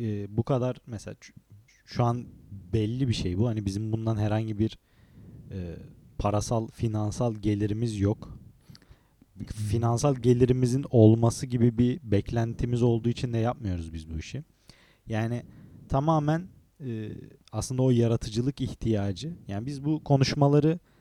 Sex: male